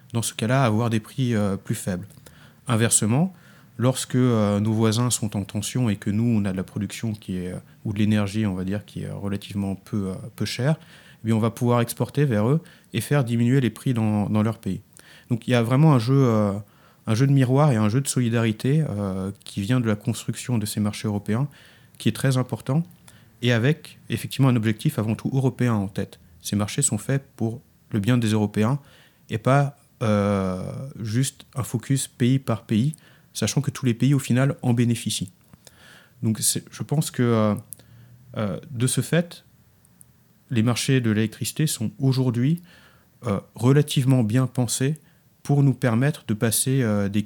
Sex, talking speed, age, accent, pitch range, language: male, 190 wpm, 30-49, French, 105-135 Hz, French